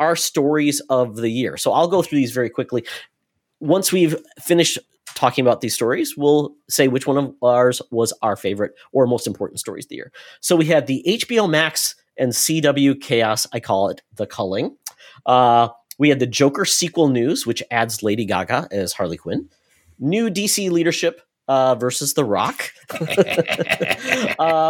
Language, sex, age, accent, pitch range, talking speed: English, male, 30-49, American, 120-160 Hz, 175 wpm